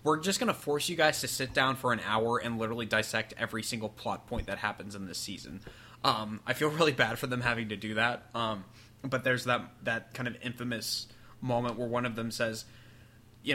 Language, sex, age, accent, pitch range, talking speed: English, male, 20-39, American, 110-130 Hz, 225 wpm